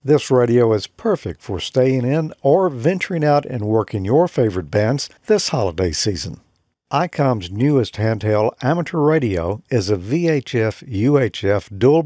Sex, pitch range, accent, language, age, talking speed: male, 110-150 Hz, American, English, 60-79, 135 wpm